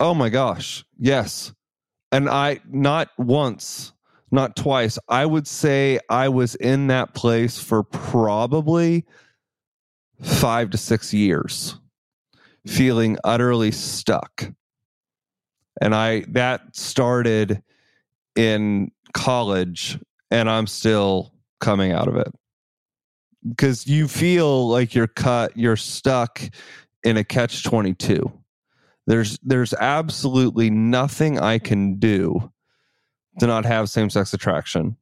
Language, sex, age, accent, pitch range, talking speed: English, male, 30-49, American, 105-130 Hz, 110 wpm